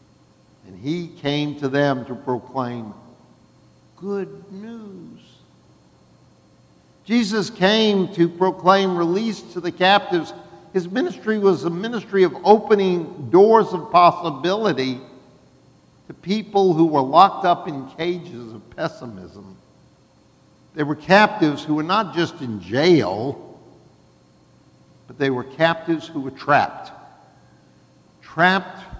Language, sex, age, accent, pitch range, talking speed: English, male, 60-79, American, 135-195 Hz, 110 wpm